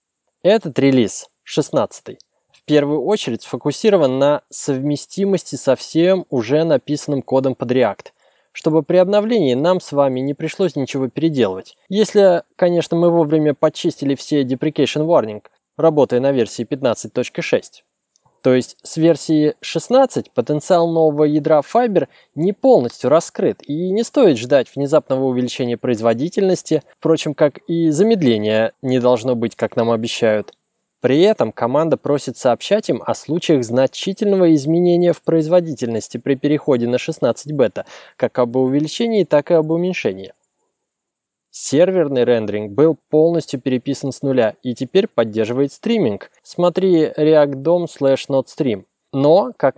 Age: 20-39